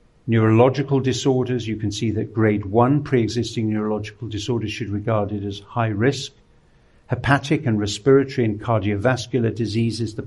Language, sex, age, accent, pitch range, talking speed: English, male, 50-69, British, 110-120 Hz, 140 wpm